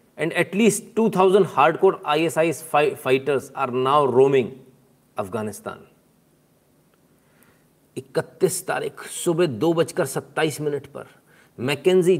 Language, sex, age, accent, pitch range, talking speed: Hindi, male, 40-59, native, 155-225 Hz, 120 wpm